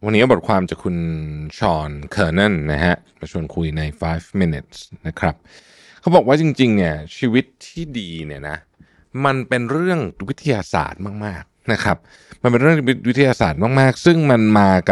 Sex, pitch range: male, 90-135 Hz